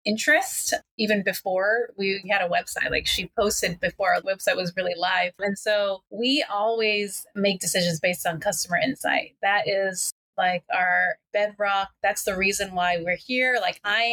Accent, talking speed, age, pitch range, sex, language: American, 165 wpm, 30-49, 185-220 Hz, female, English